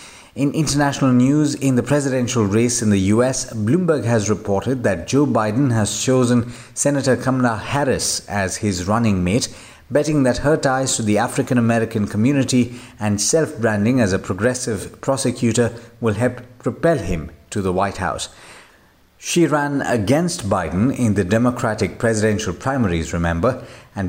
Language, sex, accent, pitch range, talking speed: English, male, Indian, 105-135 Hz, 145 wpm